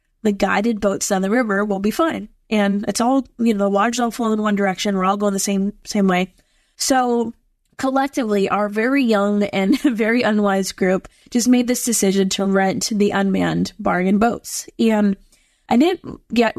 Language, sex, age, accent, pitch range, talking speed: English, female, 20-39, American, 195-230 Hz, 185 wpm